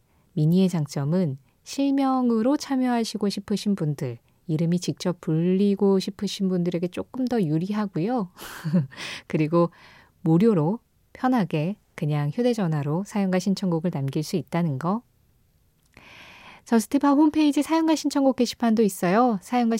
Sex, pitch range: female, 165-230 Hz